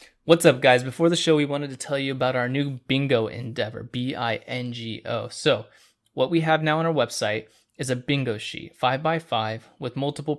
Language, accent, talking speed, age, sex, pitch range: English, American, 195 wpm, 20-39, male, 115-140 Hz